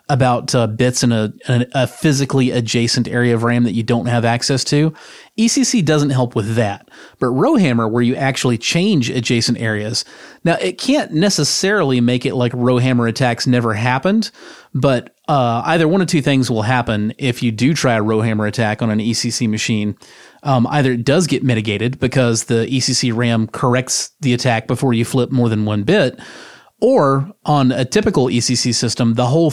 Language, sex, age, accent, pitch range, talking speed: English, male, 30-49, American, 115-135 Hz, 185 wpm